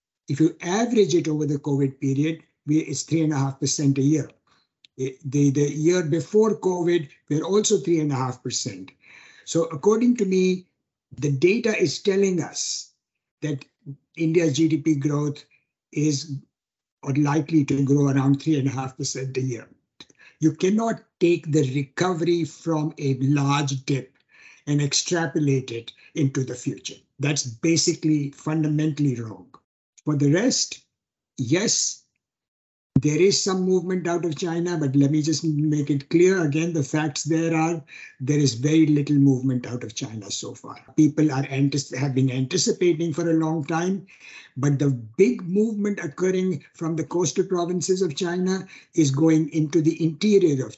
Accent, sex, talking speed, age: Indian, male, 155 wpm, 60-79